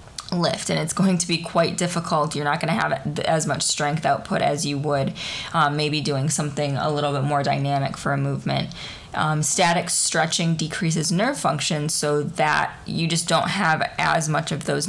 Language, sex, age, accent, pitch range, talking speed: English, female, 20-39, American, 150-180 Hz, 195 wpm